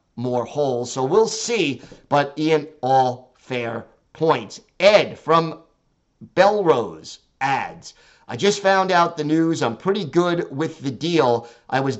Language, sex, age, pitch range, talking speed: English, male, 50-69, 135-165 Hz, 140 wpm